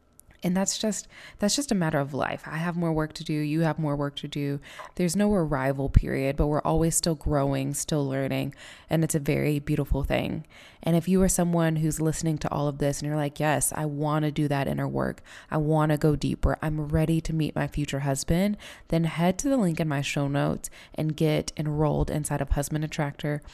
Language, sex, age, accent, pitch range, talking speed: English, female, 20-39, American, 145-170 Hz, 225 wpm